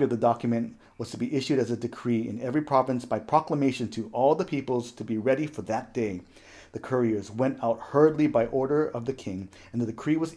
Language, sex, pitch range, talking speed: English, male, 115-145 Hz, 225 wpm